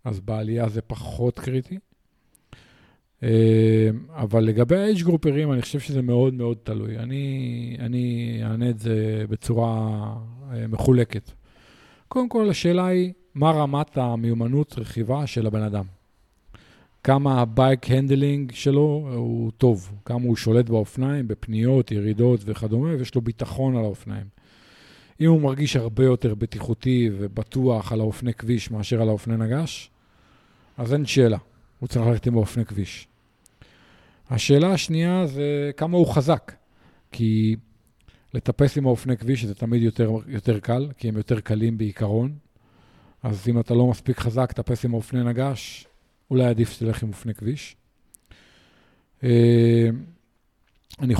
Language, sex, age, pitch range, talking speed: Hebrew, male, 40-59, 110-130 Hz, 130 wpm